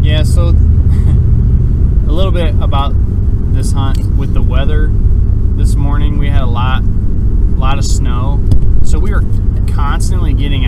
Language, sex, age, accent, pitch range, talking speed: English, male, 20-39, American, 80-100 Hz, 145 wpm